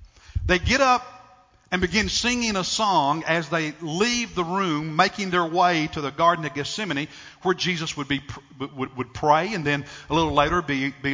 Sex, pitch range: male, 145-205 Hz